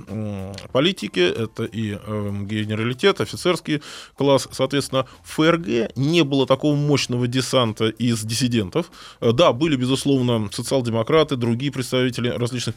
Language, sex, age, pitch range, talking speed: Russian, male, 20-39, 115-140 Hz, 115 wpm